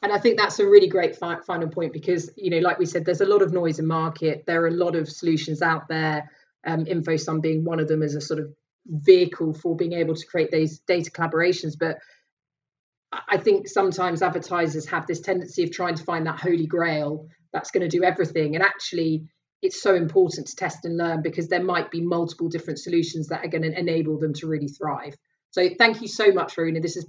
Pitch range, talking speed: 160-180 Hz, 225 wpm